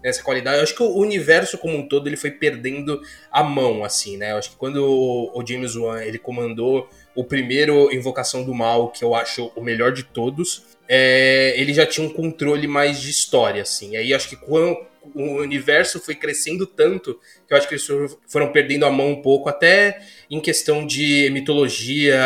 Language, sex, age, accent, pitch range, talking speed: Portuguese, male, 20-39, Brazilian, 130-170 Hz, 200 wpm